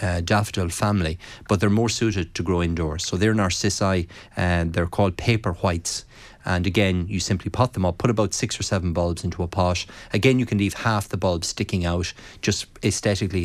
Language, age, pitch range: English, 30-49, 90-105 Hz